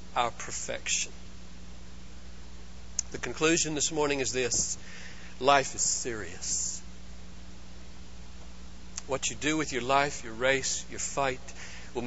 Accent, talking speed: American, 110 wpm